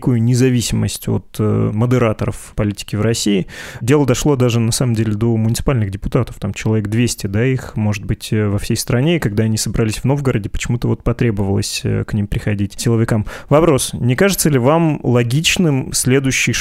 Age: 20-39